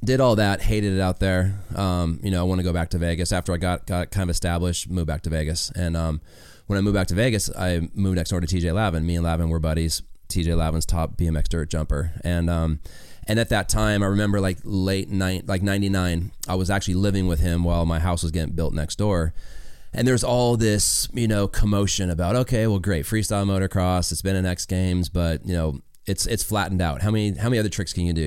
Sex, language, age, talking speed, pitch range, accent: male, English, 20-39, 245 wpm, 85-105 Hz, American